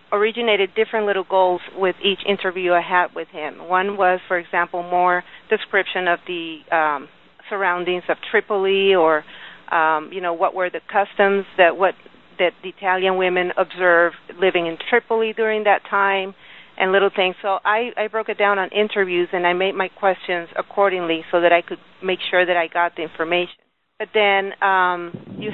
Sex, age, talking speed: female, 40-59, 180 wpm